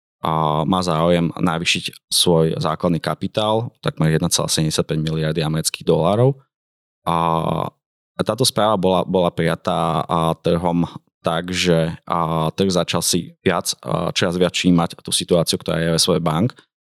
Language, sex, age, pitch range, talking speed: Slovak, male, 20-39, 80-90 Hz, 125 wpm